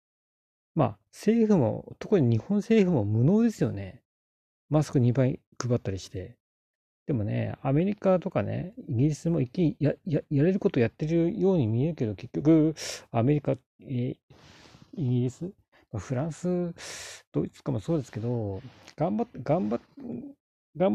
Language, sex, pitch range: Japanese, male, 115-175 Hz